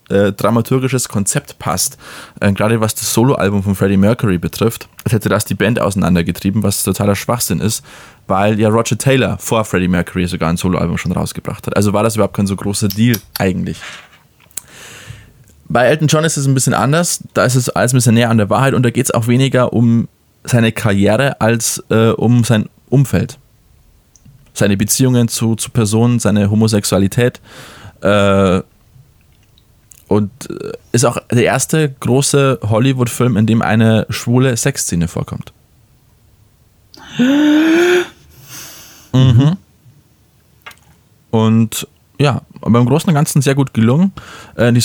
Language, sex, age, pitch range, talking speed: German, male, 20-39, 105-130 Hz, 145 wpm